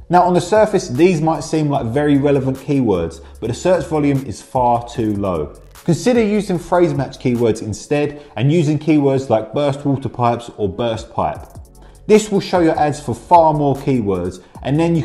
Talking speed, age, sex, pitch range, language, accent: 185 wpm, 20-39, male, 115-160 Hz, English, British